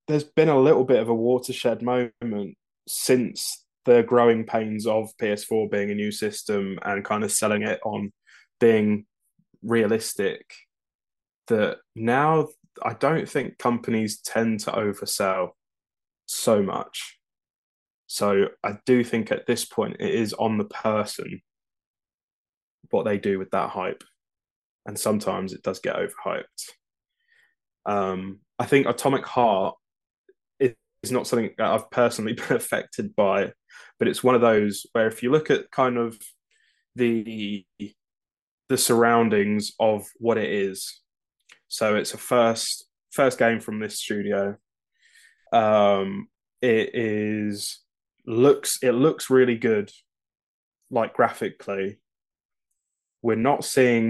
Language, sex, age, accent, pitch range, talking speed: English, male, 10-29, British, 105-135 Hz, 130 wpm